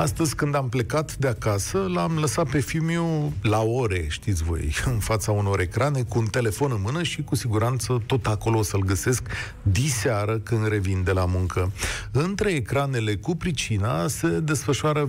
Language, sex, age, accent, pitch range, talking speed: Romanian, male, 40-59, native, 105-135 Hz, 170 wpm